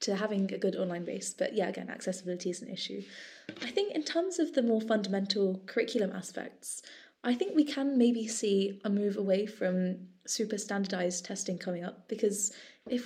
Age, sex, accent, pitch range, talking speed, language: 20-39, female, British, 185-230 Hz, 185 wpm, English